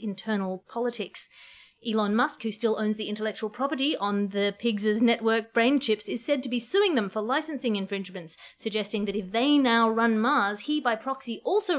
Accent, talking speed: Australian, 185 wpm